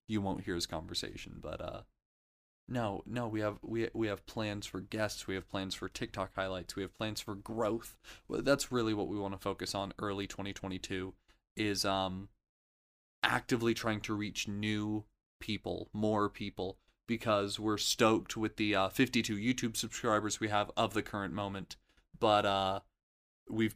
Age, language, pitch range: 20-39, English, 95-115 Hz